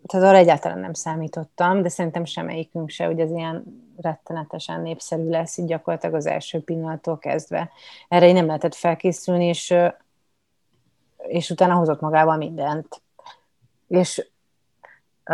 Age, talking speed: 30-49, 130 wpm